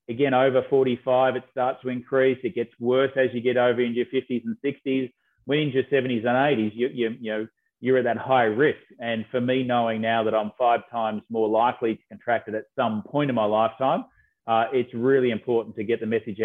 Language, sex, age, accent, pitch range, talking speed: English, male, 30-49, Australian, 115-130 Hz, 225 wpm